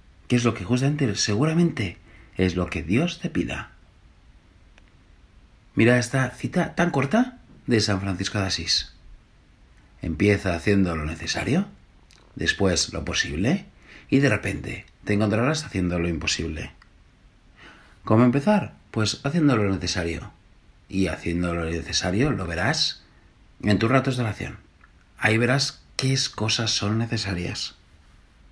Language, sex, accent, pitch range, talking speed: Spanish, male, Spanish, 85-115 Hz, 125 wpm